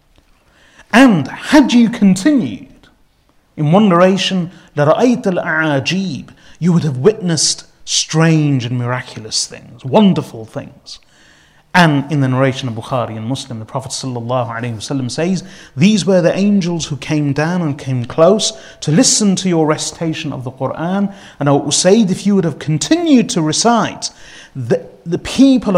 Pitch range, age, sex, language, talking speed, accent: 135-190 Hz, 30-49, male, English, 140 wpm, British